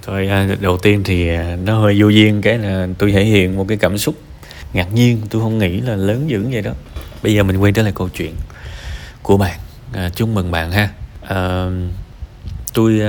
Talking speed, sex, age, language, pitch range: 200 wpm, male, 20-39, Vietnamese, 95-120 Hz